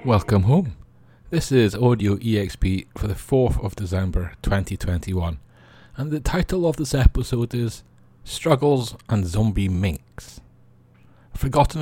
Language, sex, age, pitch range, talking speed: English, male, 30-49, 90-110 Hz, 120 wpm